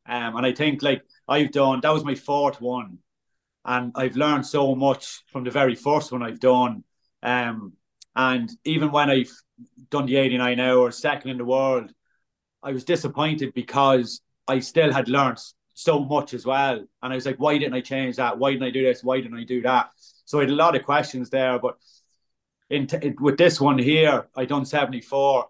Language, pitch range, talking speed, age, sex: English, 125-140 Hz, 200 wpm, 30-49, male